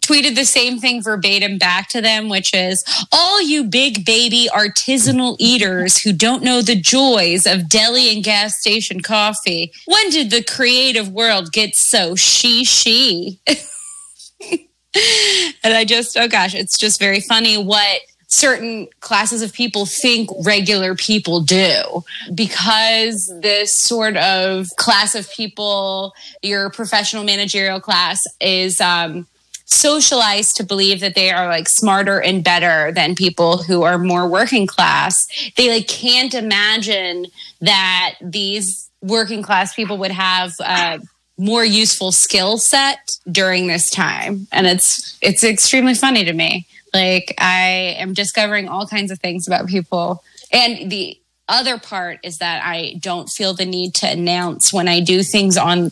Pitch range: 185-230 Hz